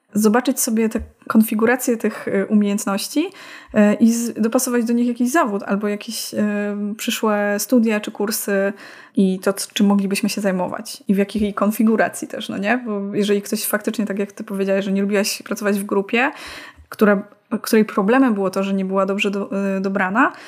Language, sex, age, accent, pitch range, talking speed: Polish, female, 20-39, native, 200-240 Hz, 165 wpm